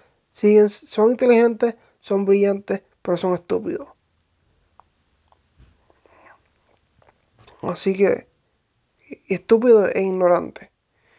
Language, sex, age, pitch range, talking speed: English, male, 20-39, 175-205 Hz, 65 wpm